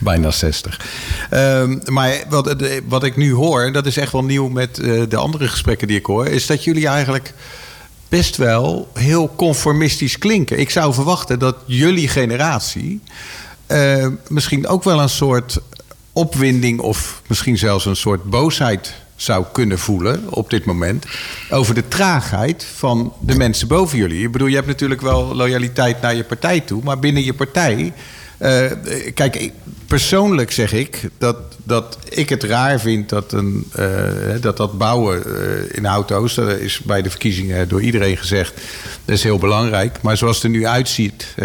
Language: Dutch